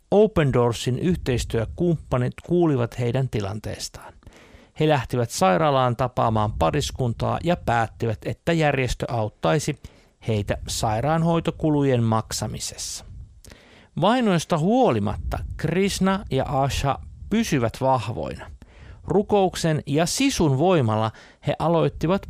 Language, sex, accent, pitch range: Finnish, male, native, 115-160 Hz